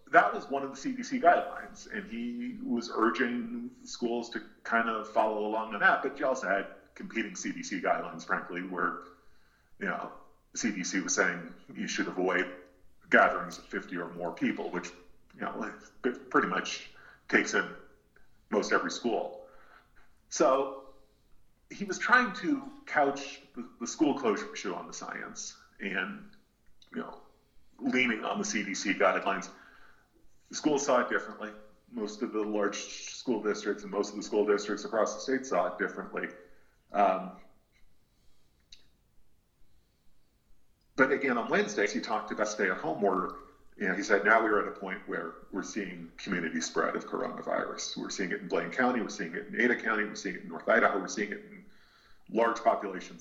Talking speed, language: 165 wpm, English